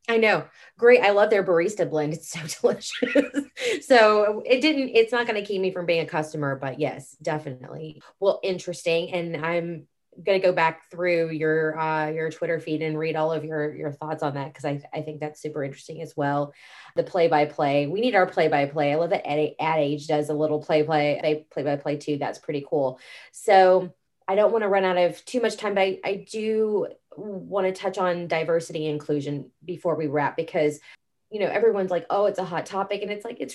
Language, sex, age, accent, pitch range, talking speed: English, female, 20-39, American, 155-190 Hz, 225 wpm